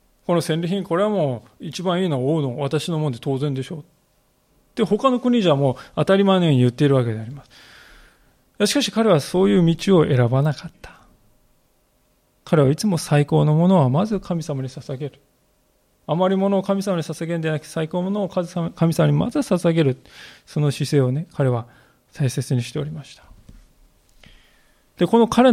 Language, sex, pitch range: Japanese, male, 130-185 Hz